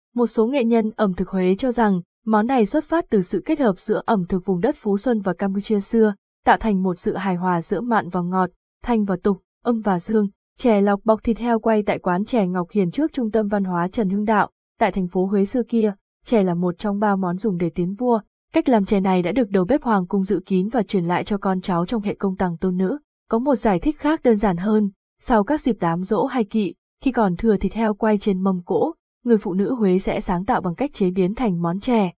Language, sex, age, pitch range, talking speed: Vietnamese, female, 20-39, 190-230 Hz, 260 wpm